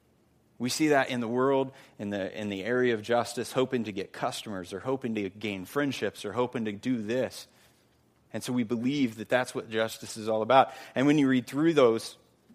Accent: American